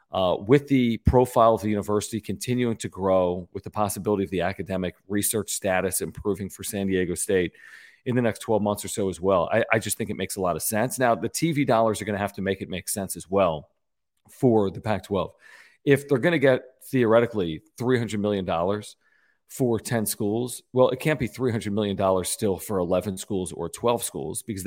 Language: English